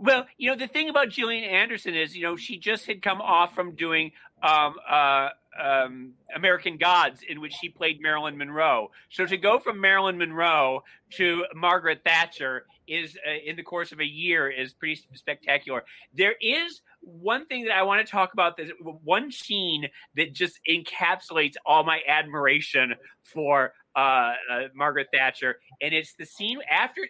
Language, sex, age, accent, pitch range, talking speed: English, male, 40-59, American, 150-195 Hz, 175 wpm